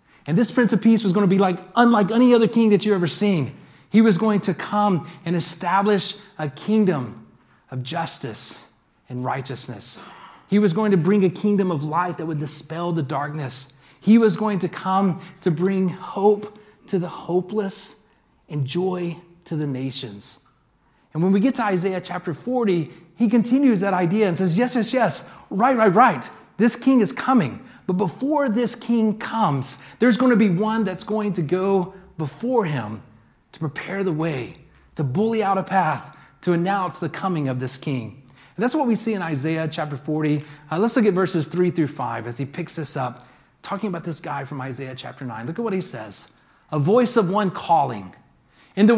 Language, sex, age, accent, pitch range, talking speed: English, male, 30-49, American, 155-220 Hz, 195 wpm